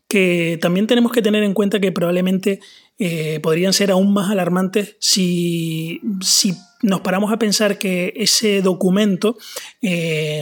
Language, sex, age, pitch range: Spanish, male, 20-39, 170-205 Hz